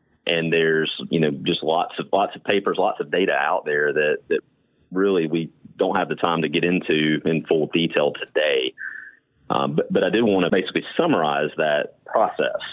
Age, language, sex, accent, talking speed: 40-59, English, male, American, 195 wpm